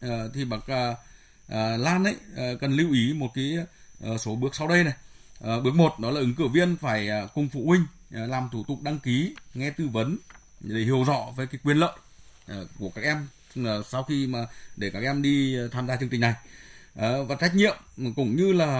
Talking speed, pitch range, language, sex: 195 wpm, 115-150 Hz, Vietnamese, male